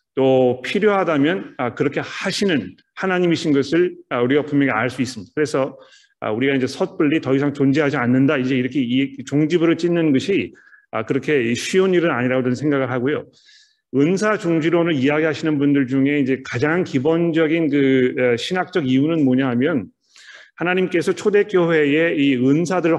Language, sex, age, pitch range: Korean, male, 40-59, 135-170 Hz